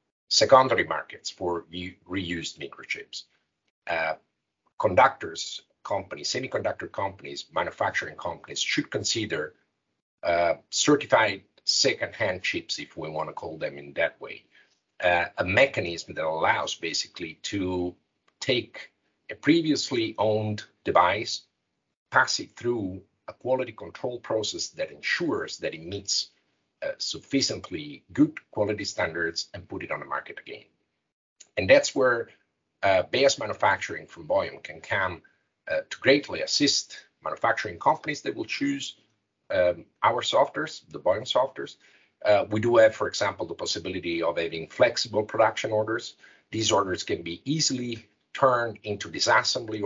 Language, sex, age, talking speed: English, male, 50-69, 130 wpm